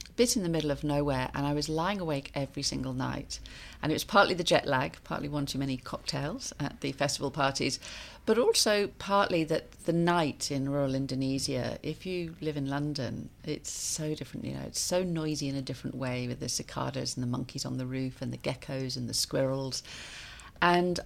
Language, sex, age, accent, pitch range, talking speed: English, female, 40-59, British, 135-160 Hz, 205 wpm